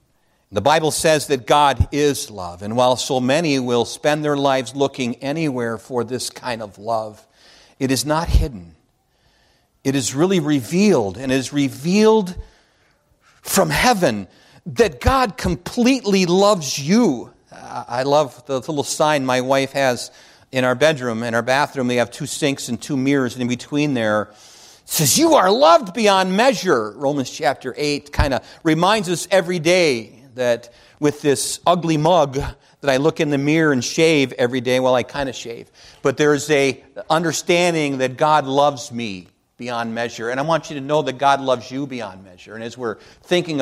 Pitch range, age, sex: 120-155 Hz, 50-69, male